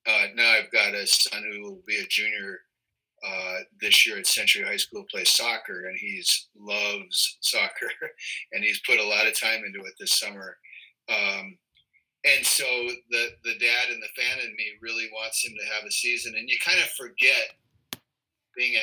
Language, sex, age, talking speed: English, male, 30-49, 190 wpm